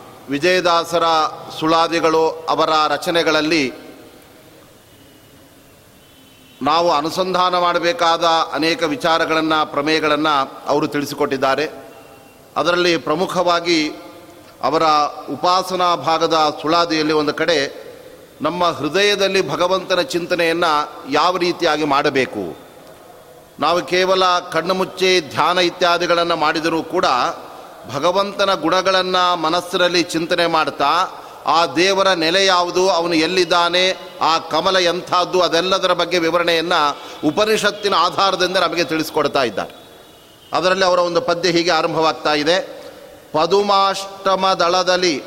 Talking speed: 85 wpm